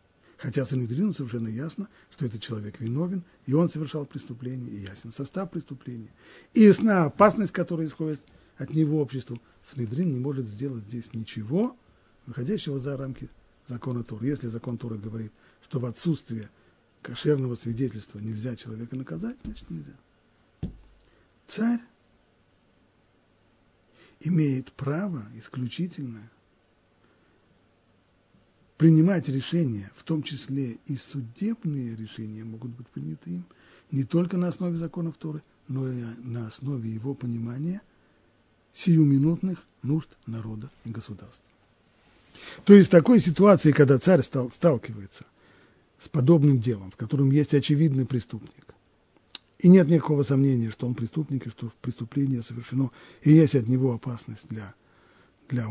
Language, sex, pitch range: Russian, male, 115-155 Hz